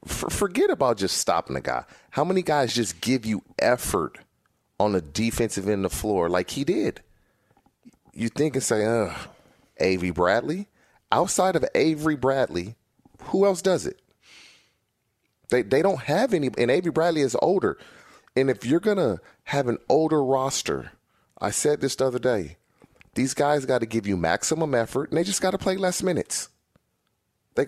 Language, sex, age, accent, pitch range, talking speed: English, male, 30-49, American, 95-140 Hz, 175 wpm